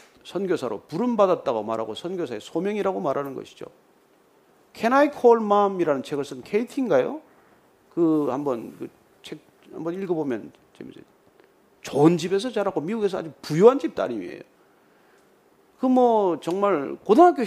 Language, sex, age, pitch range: Korean, male, 40-59, 165-240 Hz